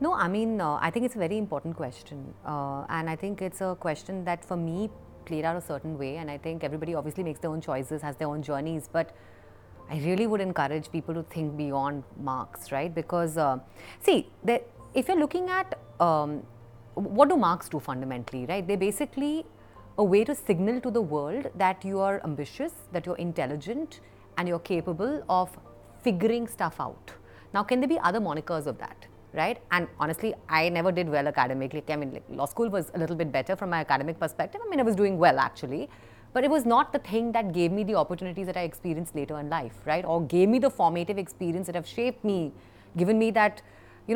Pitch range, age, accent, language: 150-220 Hz, 30-49, native, Hindi